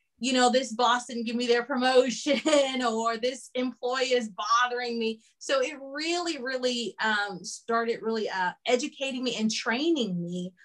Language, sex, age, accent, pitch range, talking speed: English, female, 20-39, American, 220-265 Hz, 160 wpm